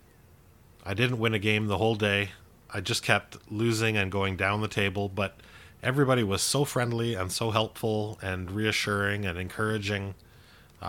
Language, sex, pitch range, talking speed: English, male, 90-110 Hz, 165 wpm